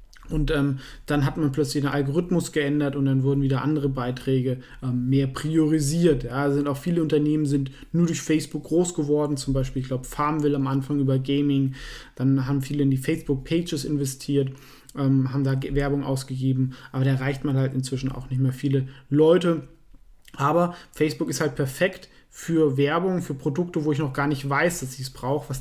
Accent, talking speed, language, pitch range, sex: German, 185 wpm, German, 135-160 Hz, male